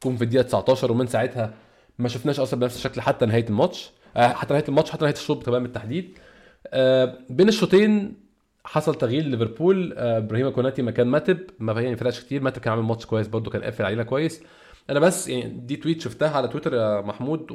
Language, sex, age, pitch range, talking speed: Arabic, male, 20-39, 120-140 Hz, 190 wpm